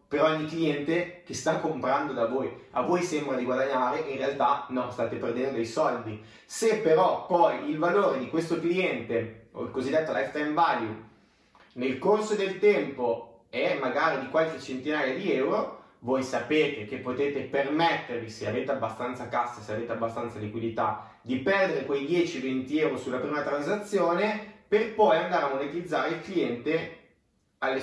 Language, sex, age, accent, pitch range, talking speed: Italian, male, 30-49, native, 120-165 Hz, 155 wpm